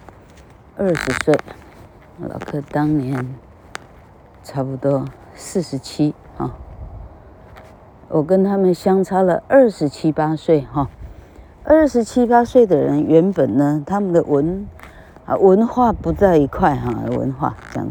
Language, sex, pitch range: Chinese, female, 135-200 Hz